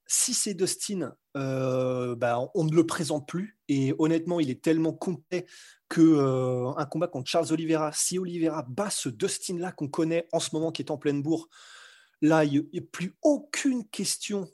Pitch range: 135-170 Hz